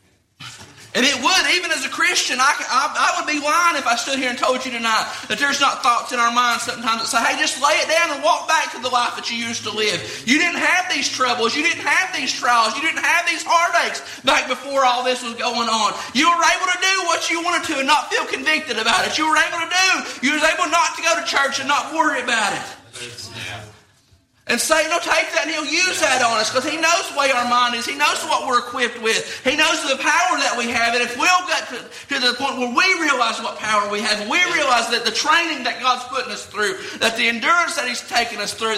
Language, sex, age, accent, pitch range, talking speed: English, male, 40-59, American, 225-315 Hz, 255 wpm